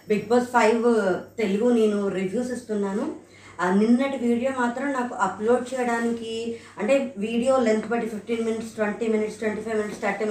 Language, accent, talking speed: Telugu, native, 145 wpm